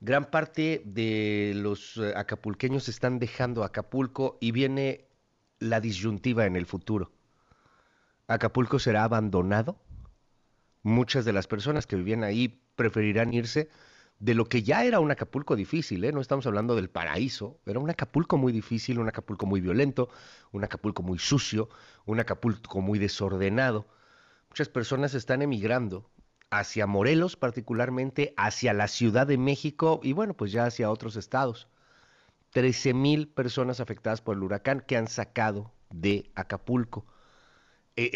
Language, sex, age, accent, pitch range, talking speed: Spanish, male, 40-59, Mexican, 105-130 Hz, 140 wpm